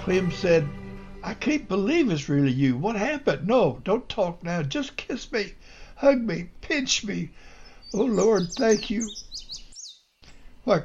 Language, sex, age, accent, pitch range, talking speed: English, male, 60-79, American, 145-200 Hz, 145 wpm